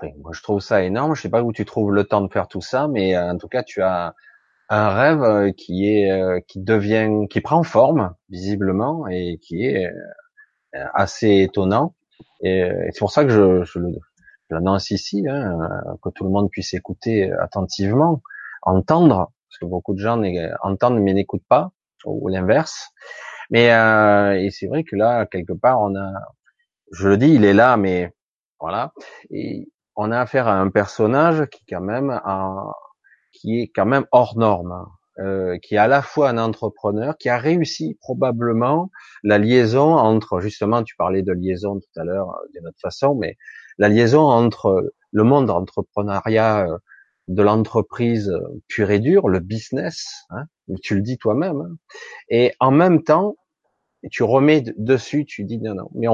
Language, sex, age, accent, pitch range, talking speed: French, male, 30-49, French, 95-125 Hz, 165 wpm